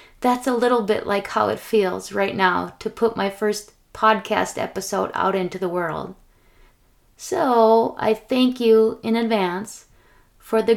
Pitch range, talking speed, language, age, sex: 205-240 Hz, 155 wpm, English, 30-49, female